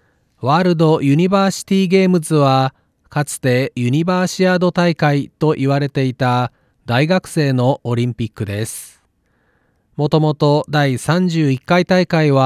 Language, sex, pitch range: Japanese, male, 130-165 Hz